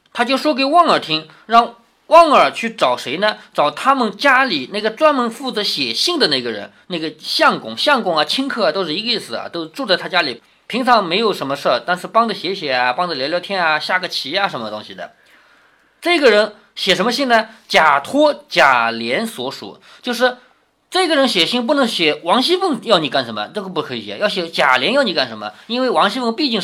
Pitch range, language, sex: 165-260 Hz, Chinese, male